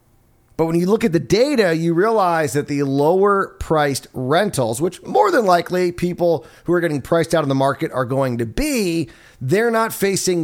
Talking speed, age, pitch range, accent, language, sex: 195 wpm, 30-49, 140-185 Hz, American, English, male